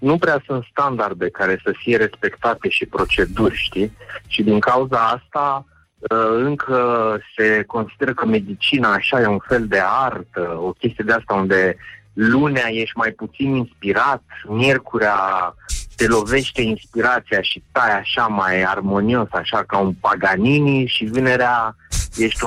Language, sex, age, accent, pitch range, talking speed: Romanian, male, 30-49, native, 105-135 Hz, 140 wpm